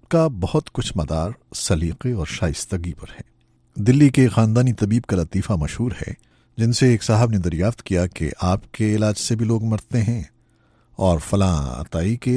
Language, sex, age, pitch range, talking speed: Urdu, male, 50-69, 95-130 Hz, 180 wpm